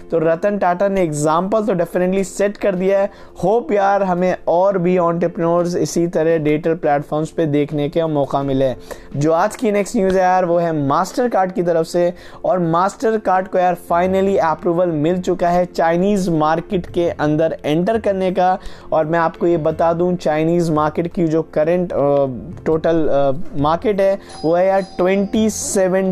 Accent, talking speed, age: native, 170 wpm, 20-39